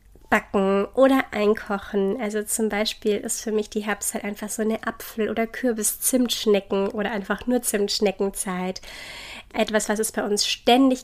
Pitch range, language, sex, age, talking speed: 210-235 Hz, German, female, 30-49, 150 wpm